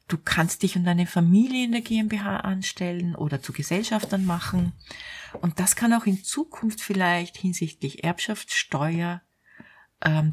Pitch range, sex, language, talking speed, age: 155-195 Hz, female, German, 140 wpm, 40-59